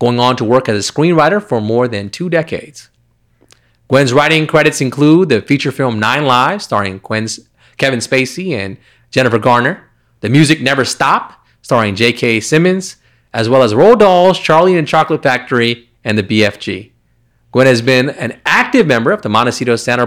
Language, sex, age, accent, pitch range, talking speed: English, male, 30-49, American, 115-155 Hz, 170 wpm